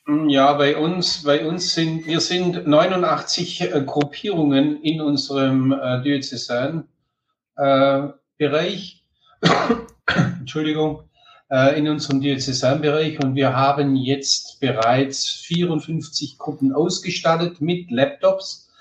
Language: German